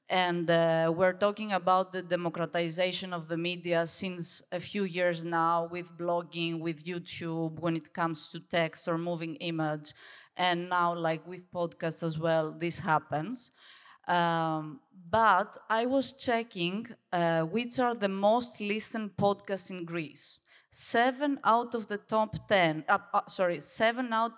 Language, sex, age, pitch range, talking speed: French, female, 30-49, 170-210 Hz, 150 wpm